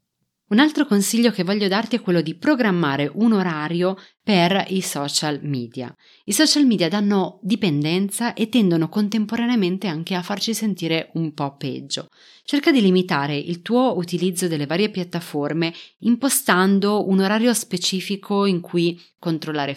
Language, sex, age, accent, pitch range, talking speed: Italian, female, 30-49, native, 165-225 Hz, 145 wpm